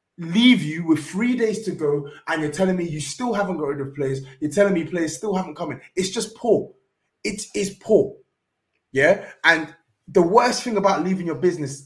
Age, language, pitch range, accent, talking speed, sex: 20-39, English, 165-220 Hz, British, 205 wpm, male